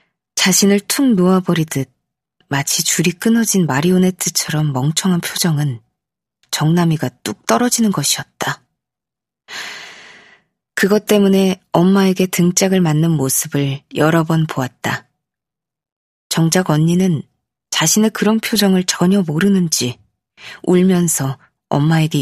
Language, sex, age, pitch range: Korean, female, 20-39, 150-195 Hz